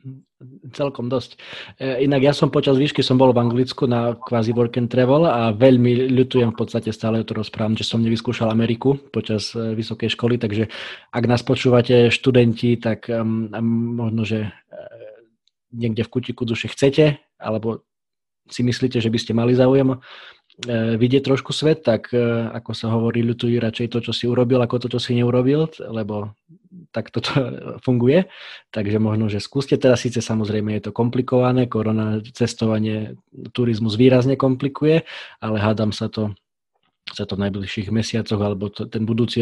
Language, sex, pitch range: Slovak, male, 110-130 Hz